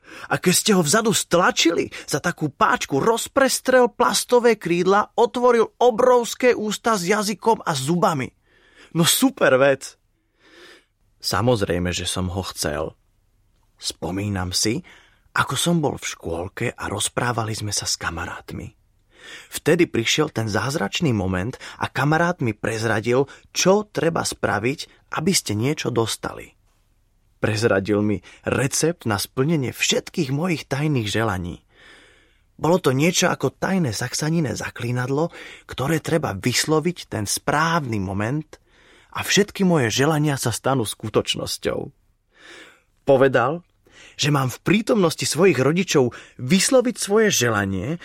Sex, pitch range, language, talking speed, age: male, 110-180 Hz, Slovak, 120 wpm, 30-49